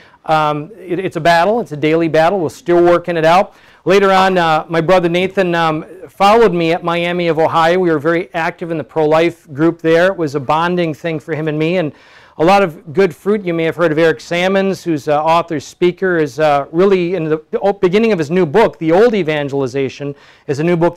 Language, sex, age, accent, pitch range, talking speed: English, male, 40-59, American, 155-185 Hz, 225 wpm